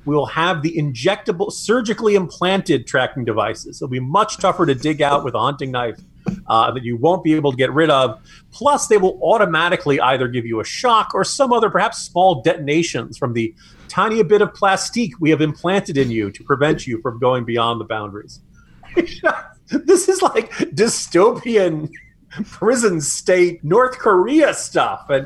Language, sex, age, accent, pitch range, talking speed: English, male, 40-59, American, 125-195 Hz, 175 wpm